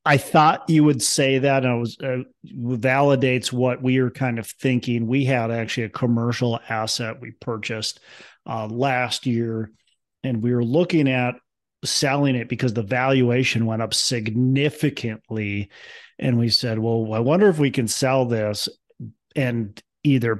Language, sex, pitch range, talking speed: English, male, 110-130 Hz, 155 wpm